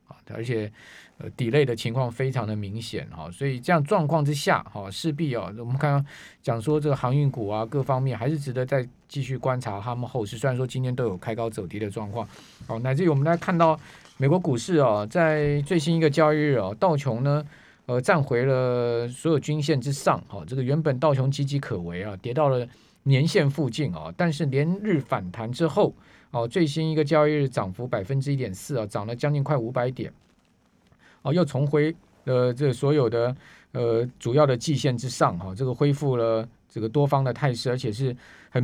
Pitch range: 120-150 Hz